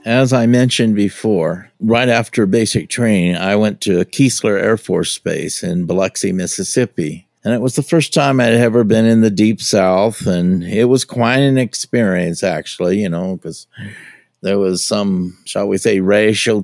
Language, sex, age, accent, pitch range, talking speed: English, male, 50-69, American, 100-120 Hz, 175 wpm